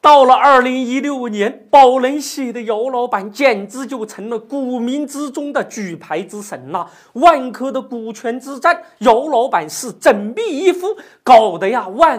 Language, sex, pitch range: Chinese, male, 220-300 Hz